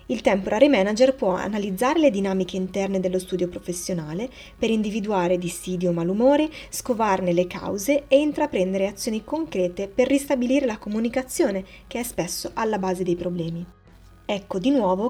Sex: female